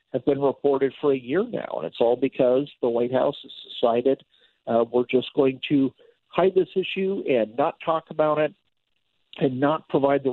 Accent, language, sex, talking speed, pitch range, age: American, English, male, 190 wpm, 130-165 Hz, 50-69